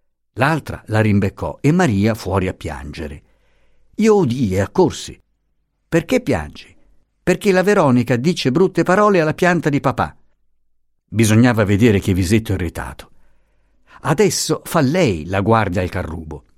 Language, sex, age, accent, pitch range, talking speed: Italian, male, 50-69, native, 95-145 Hz, 130 wpm